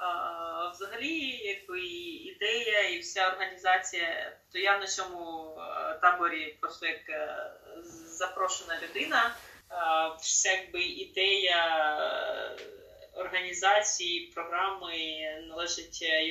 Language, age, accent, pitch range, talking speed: Ukrainian, 20-39, native, 170-265 Hz, 95 wpm